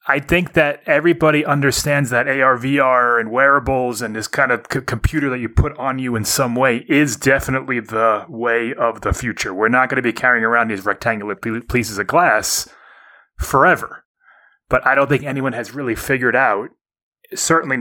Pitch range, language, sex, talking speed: 110-135 Hz, English, male, 180 wpm